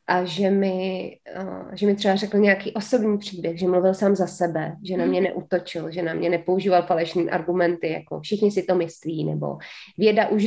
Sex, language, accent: female, Czech, native